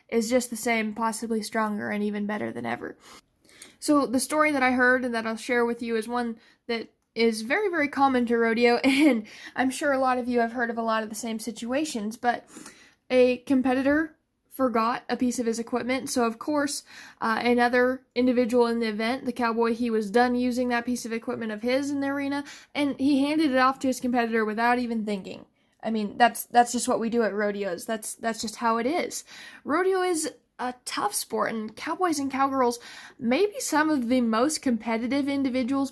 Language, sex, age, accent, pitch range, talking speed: English, female, 10-29, American, 225-265 Hz, 210 wpm